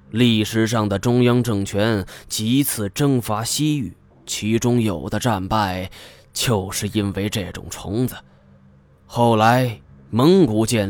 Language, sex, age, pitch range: Chinese, male, 20-39, 95-120 Hz